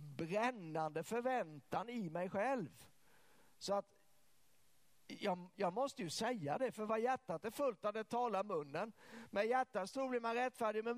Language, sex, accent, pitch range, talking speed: Swedish, male, native, 155-225 Hz, 160 wpm